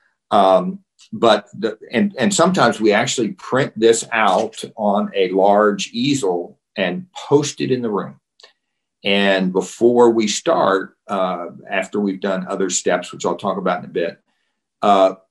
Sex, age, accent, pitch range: male, 50-69, American, 100-145 Hz